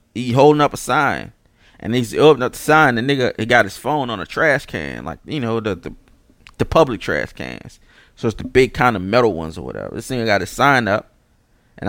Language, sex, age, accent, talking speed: English, male, 20-39, American, 240 wpm